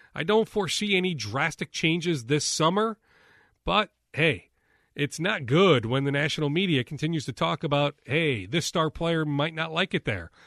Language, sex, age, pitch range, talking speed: English, male, 40-59, 130-175 Hz, 170 wpm